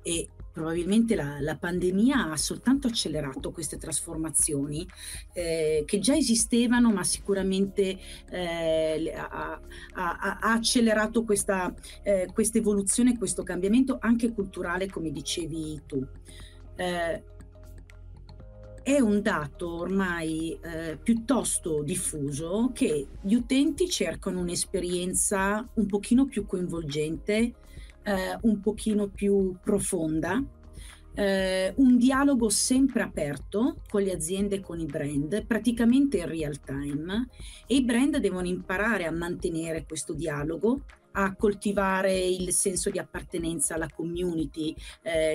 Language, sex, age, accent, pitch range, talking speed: Italian, female, 40-59, native, 160-215 Hz, 110 wpm